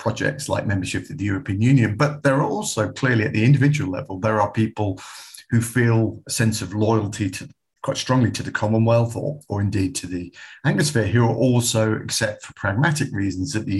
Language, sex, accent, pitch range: English, male, British, 100-135 Hz